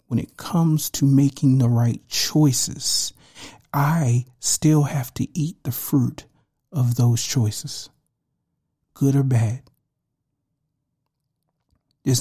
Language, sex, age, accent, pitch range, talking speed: English, male, 50-69, American, 125-145 Hz, 110 wpm